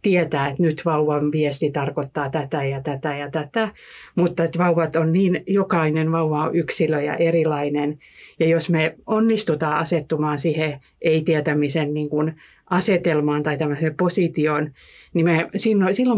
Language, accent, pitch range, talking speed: Finnish, native, 150-180 Hz, 125 wpm